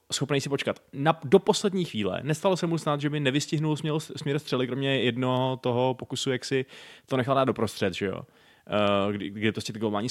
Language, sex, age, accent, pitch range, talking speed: Czech, male, 20-39, native, 120-160 Hz, 220 wpm